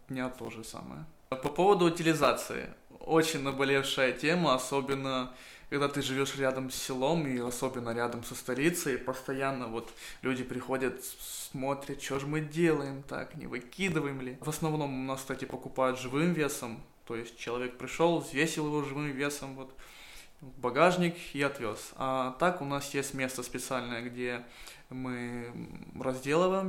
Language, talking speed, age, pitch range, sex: Russian, 145 wpm, 20-39, 125-145 Hz, male